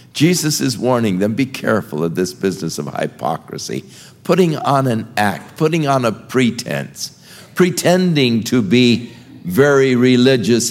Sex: male